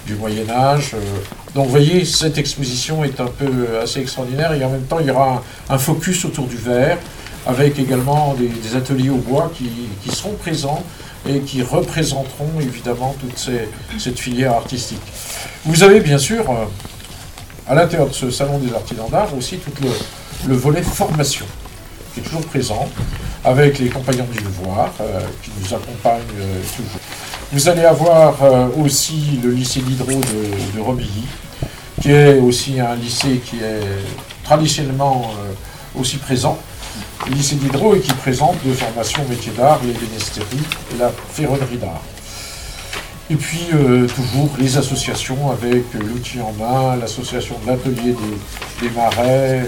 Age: 50-69